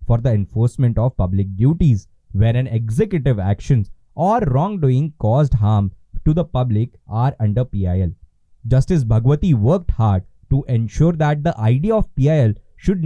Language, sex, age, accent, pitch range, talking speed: English, male, 20-39, Indian, 110-155 Hz, 145 wpm